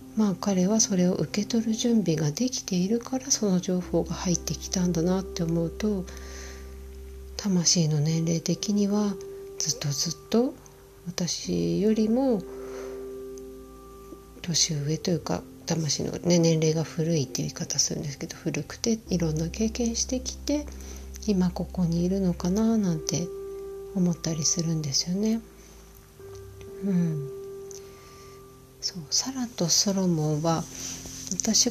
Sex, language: female, Japanese